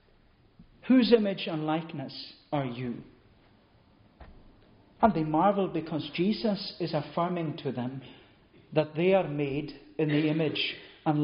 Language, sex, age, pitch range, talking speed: English, male, 40-59, 145-195 Hz, 125 wpm